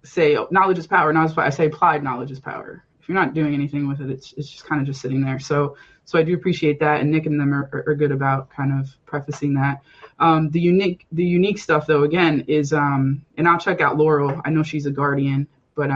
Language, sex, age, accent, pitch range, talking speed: English, female, 20-39, American, 140-160 Hz, 245 wpm